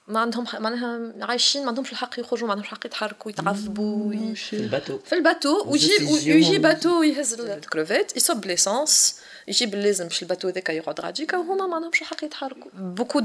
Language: French